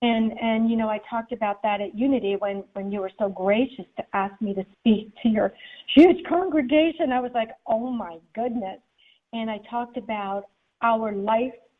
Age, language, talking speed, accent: 40-59, English, 190 wpm, American